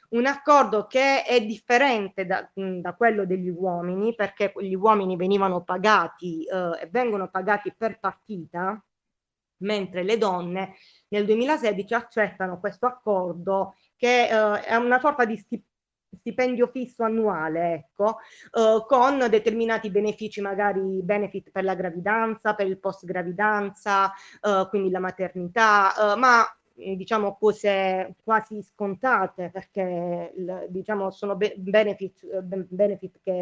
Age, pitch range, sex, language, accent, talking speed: 20-39, 190-230 Hz, female, Italian, native, 120 wpm